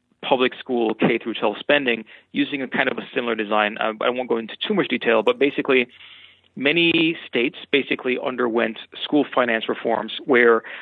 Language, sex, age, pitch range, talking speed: English, male, 30-49, 115-145 Hz, 160 wpm